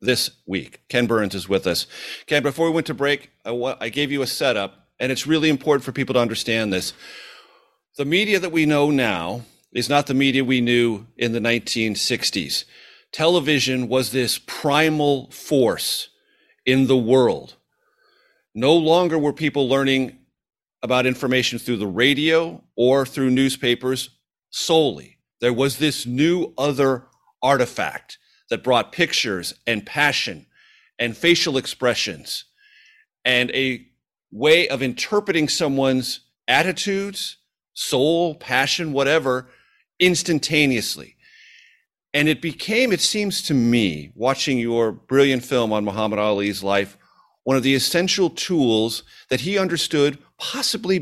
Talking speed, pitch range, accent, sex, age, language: 135 wpm, 125-160 Hz, American, male, 40-59, English